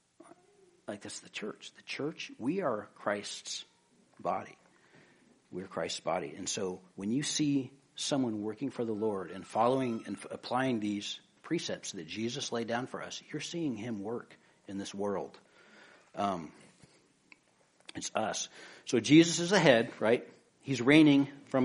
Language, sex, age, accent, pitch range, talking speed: English, male, 60-79, American, 115-160 Hz, 145 wpm